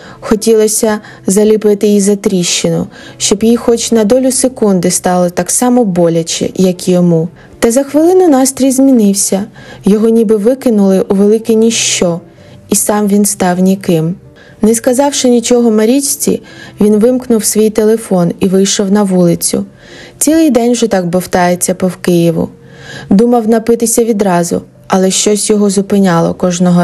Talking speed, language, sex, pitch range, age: 135 wpm, Ukrainian, female, 185-230 Hz, 20-39